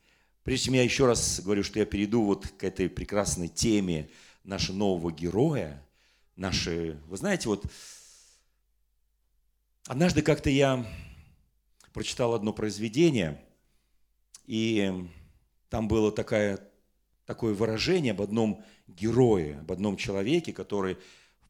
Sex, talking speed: male, 115 wpm